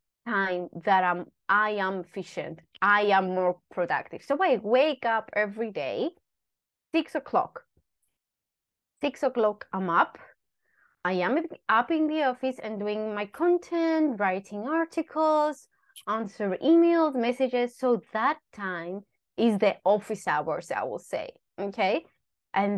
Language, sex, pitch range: English, female, 195-300 Hz